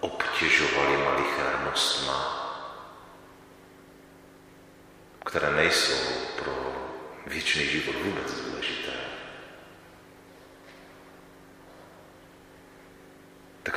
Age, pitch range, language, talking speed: 40-59, 80-95 Hz, Czech, 50 wpm